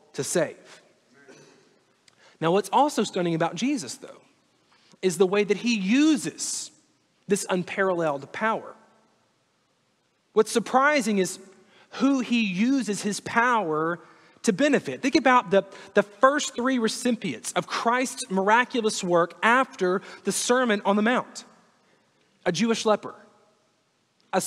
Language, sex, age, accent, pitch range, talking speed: English, male, 30-49, American, 185-235 Hz, 120 wpm